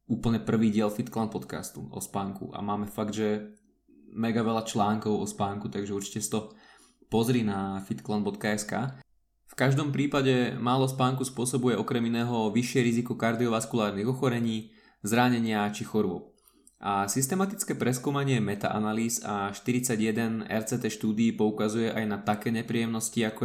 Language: Slovak